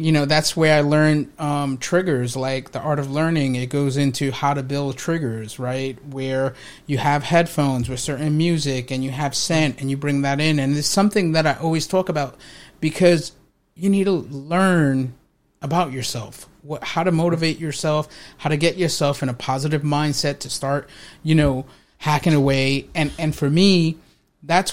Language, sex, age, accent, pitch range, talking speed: English, male, 30-49, American, 135-170 Hz, 180 wpm